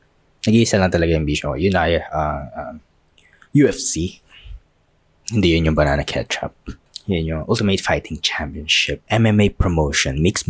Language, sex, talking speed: Filipino, male, 130 wpm